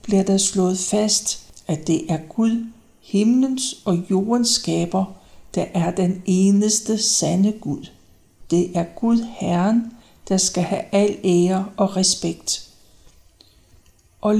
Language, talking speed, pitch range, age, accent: Danish, 130 wpm, 165-210 Hz, 60-79, native